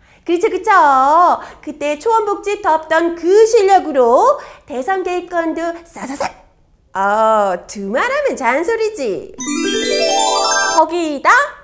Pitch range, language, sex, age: 315-415 Hz, Korean, female, 30-49